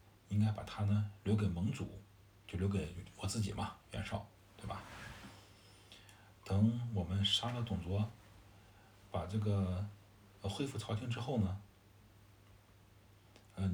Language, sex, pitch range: Chinese, male, 100-110 Hz